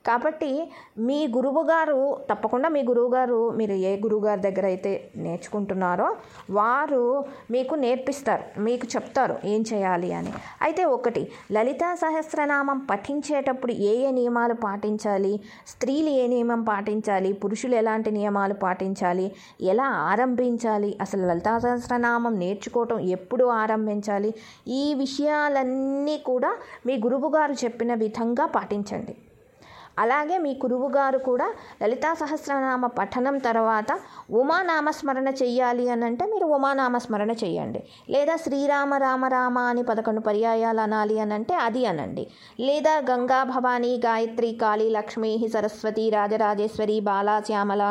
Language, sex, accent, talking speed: Telugu, female, native, 110 wpm